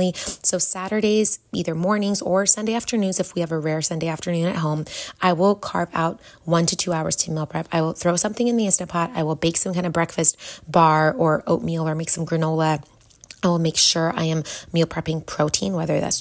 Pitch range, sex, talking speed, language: 160-190 Hz, female, 220 wpm, English